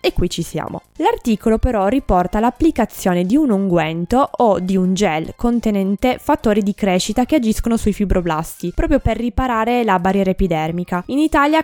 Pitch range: 185-235 Hz